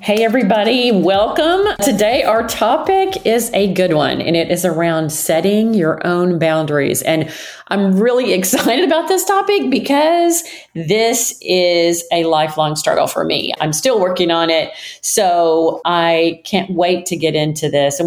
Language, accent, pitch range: English, American, 155-225 Hz